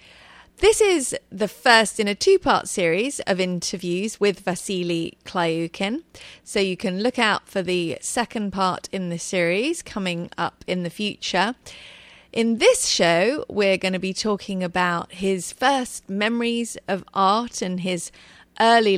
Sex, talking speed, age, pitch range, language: female, 150 wpm, 30-49, 185-230 Hz, English